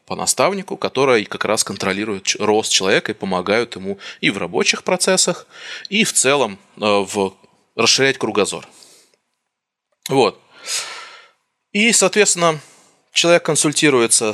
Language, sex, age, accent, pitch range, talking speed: Russian, male, 20-39, native, 100-160 Hz, 110 wpm